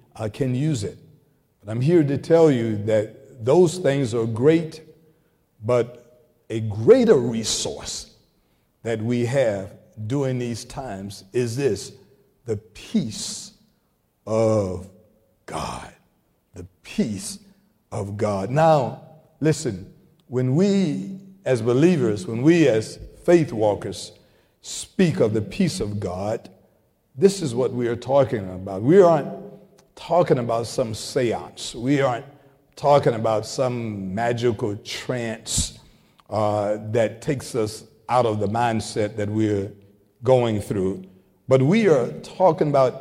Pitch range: 105-140 Hz